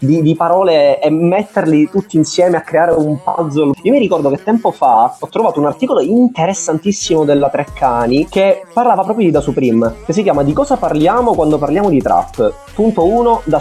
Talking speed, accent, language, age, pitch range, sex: 190 wpm, native, Italian, 20-39, 135-185 Hz, male